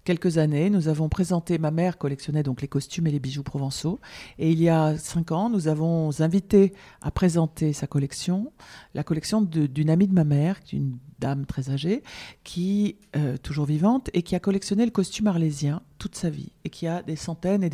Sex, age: female, 40-59